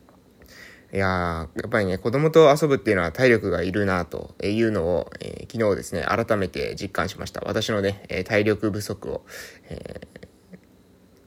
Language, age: Japanese, 20-39